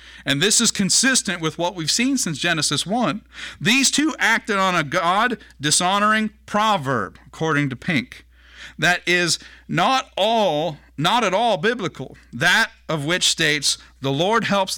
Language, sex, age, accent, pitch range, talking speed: English, male, 50-69, American, 140-205 Hz, 145 wpm